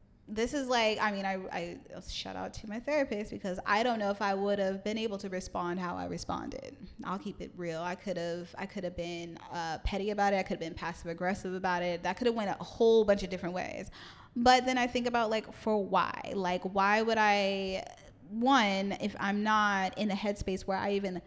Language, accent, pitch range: English, American, 180-230 Hz